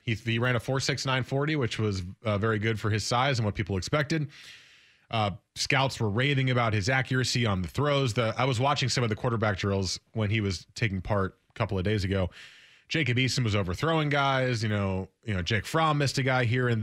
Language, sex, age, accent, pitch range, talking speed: English, male, 20-39, American, 100-130 Hz, 220 wpm